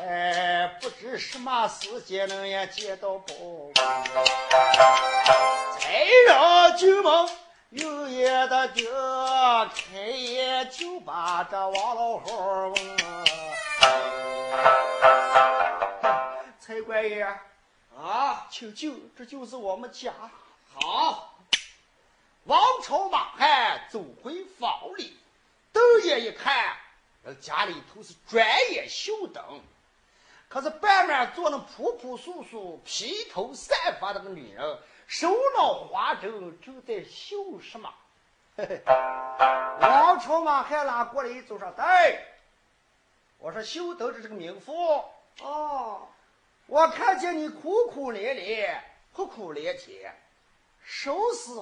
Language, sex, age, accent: Chinese, male, 40-59, native